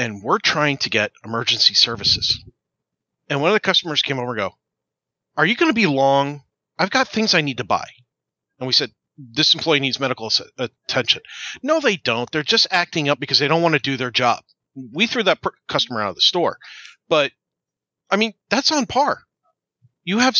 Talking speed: 200 wpm